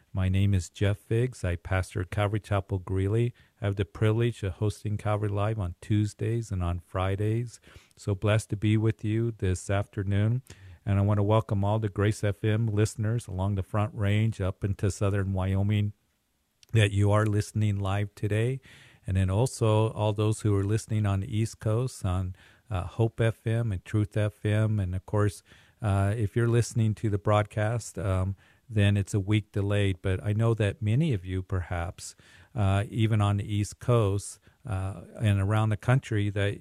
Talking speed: 180 wpm